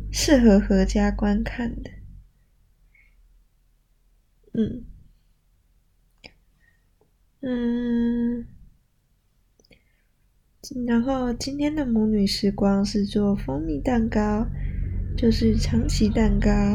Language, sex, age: Chinese, female, 20-39